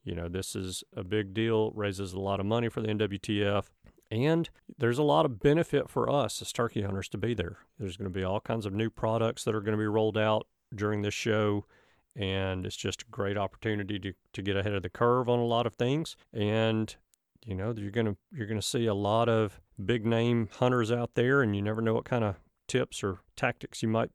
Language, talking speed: English, 235 wpm